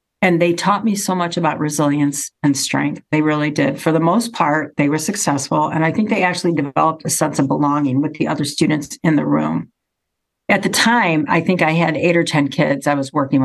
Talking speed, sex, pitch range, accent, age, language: 230 wpm, female, 145-175 Hz, American, 50-69, English